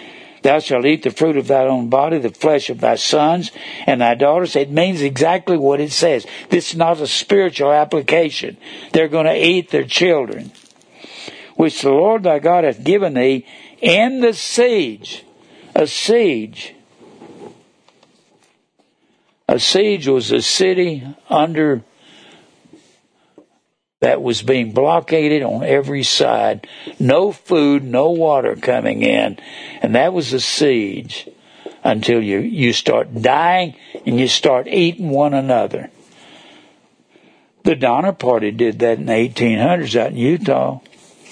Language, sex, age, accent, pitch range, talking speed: English, male, 60-79, American, 125-170 Hz, 135 wpm